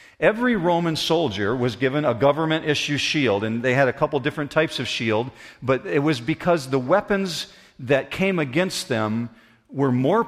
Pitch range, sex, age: 125-155 Hz, male, 50-69